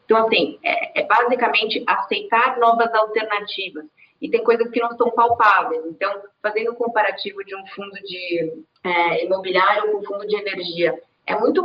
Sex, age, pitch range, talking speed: female, 20-39, 185-245 Hz, 155 wpm